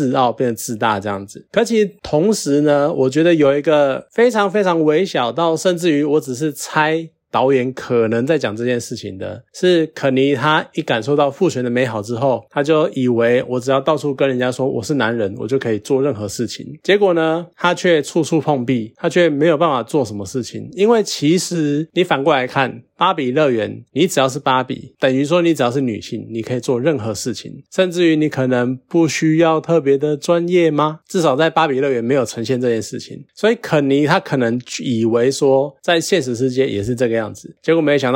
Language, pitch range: Chinese, 125-160 Hz